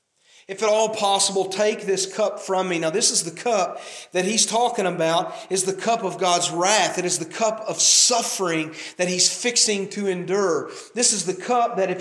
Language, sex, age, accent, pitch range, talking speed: English, male, 40-59, American, 160-255 Hz, 205 wpm